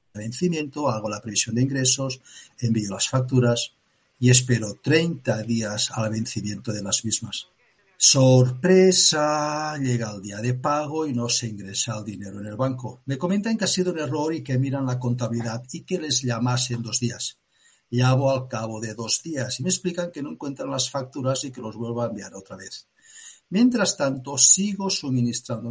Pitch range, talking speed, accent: 120-150 Hz, 180 wpm, Spanish